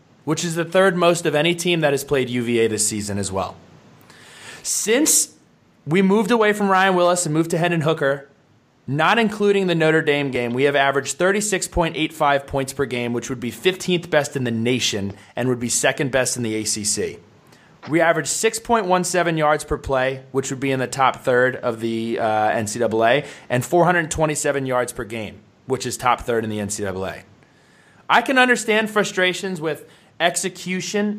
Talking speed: 175 wpm